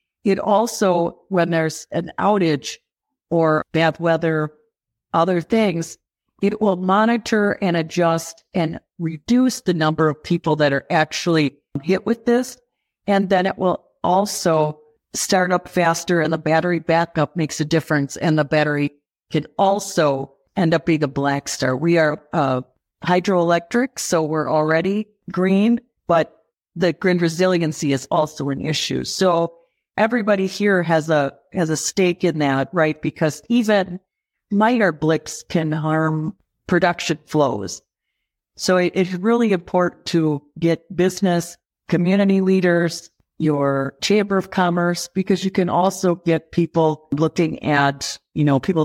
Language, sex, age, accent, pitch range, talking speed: English, female, 50-69, American, 150-185 Hz, 140 wpm